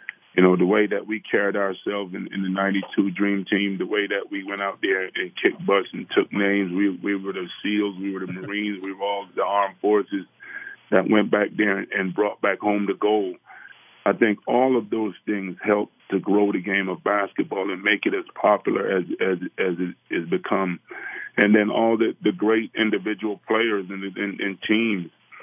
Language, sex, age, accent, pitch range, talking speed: English, male, 30-49, American, 95-105 Hz, 205 wpm